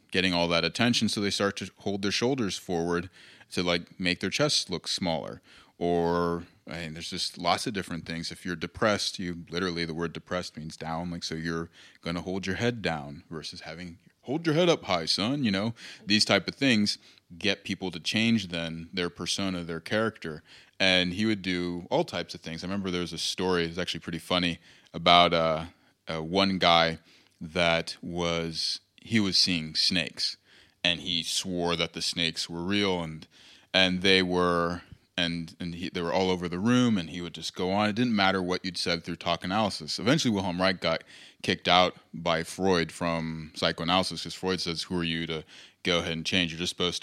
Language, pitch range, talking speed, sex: English, 85-95 Hz, 205 wpm, male